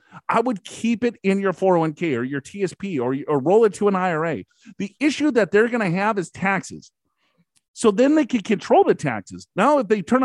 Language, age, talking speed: English, 40-59, 215 wpm